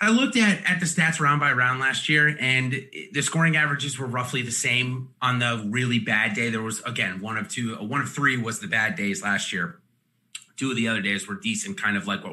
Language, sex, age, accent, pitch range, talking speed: English, male, 30-49, American, 115-165 Hz, 245 wpm